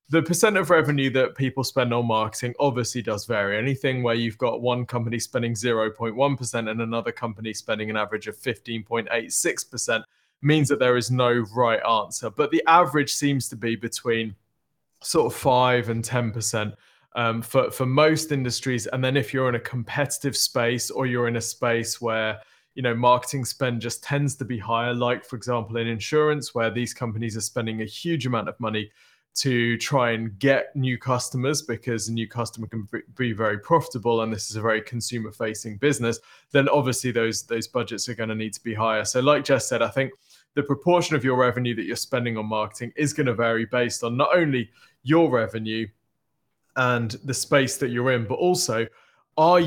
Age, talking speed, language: 20-39, 190 wpm, English